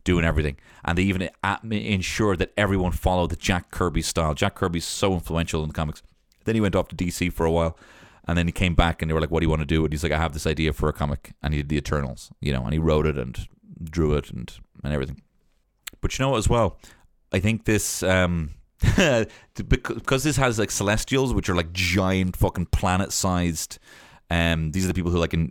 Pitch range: 80-100 Hz